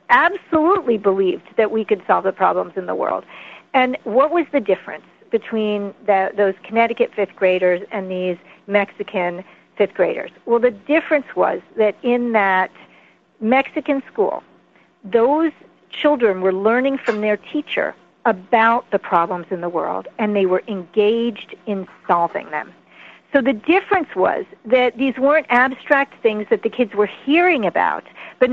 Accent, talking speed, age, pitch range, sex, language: American, 150 wpm, 50-69, 200-275 Hz, female, English